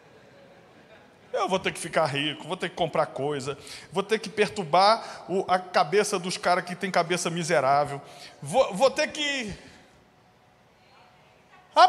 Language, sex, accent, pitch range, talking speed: Portuguese, male, Brazilian, 185-235 Hz, 145 wpm